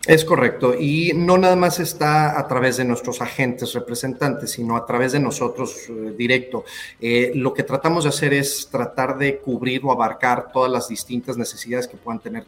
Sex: male